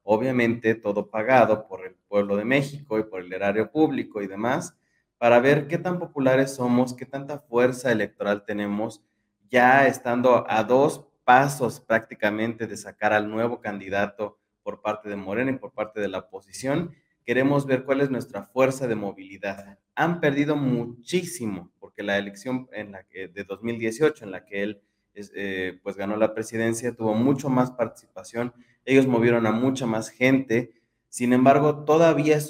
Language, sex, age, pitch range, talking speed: Spanish, male, 30-49, 105-130 Hz, 165 wpm